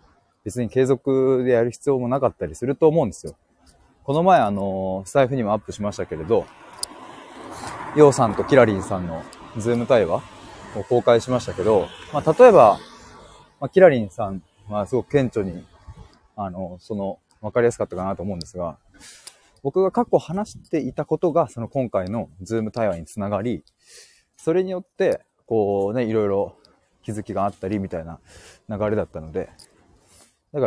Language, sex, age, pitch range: Japanese, male, 20-39, 95-135 Hz